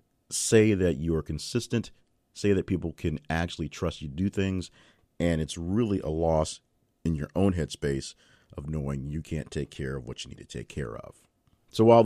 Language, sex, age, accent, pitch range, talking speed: English, male, 40-59, American, 80-100 Hz, 200 wpm